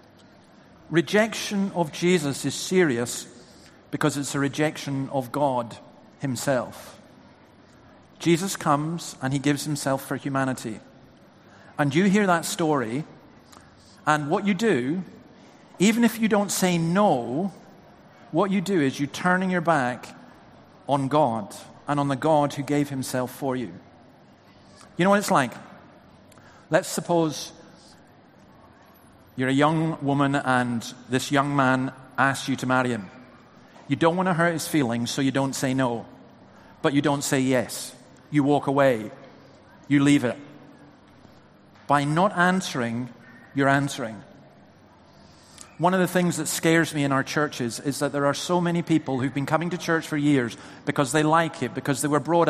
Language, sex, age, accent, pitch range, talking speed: English, male, 50-69, British, 135-170 Hz, 155 wpm